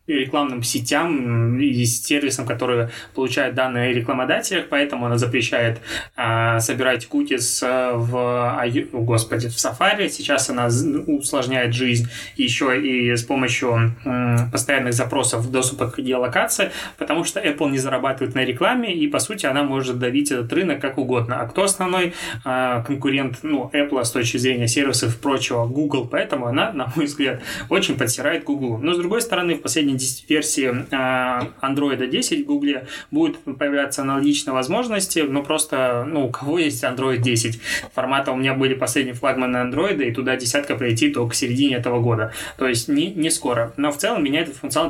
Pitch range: 125-145 Hz